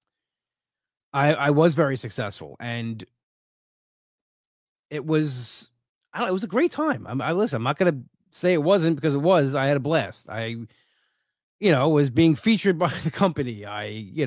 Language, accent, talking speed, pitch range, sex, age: English, American, 170 wpm, 125-165 Hz, male, 20-39